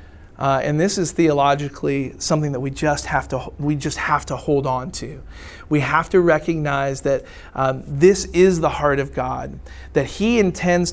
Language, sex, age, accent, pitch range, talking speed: English, male, 40-59, American, 140-170 Hz, 180 wpm